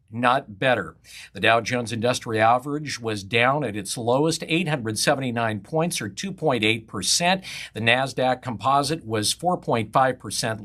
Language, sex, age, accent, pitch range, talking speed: English, male, 50-69, American, 115-155 Hz, 130 wpm